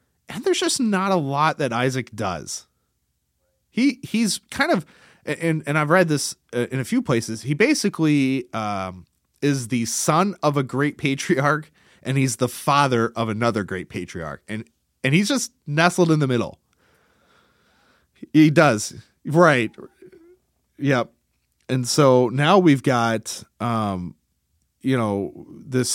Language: English